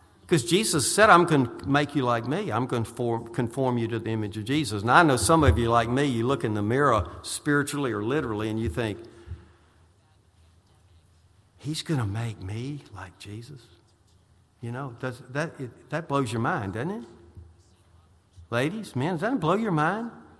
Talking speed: 180 wpm